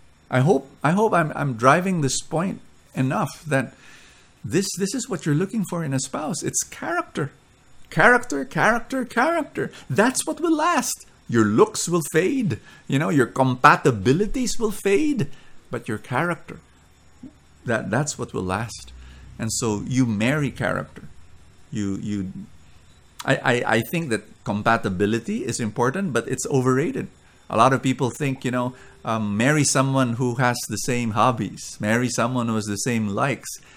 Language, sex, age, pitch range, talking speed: English, male, 50-69, 120-175 Hz, 155 wpm